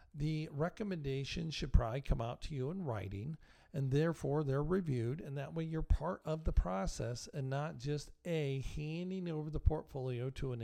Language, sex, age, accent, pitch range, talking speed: English, male, 50-69, American, 125-160 Hz, 180 wpm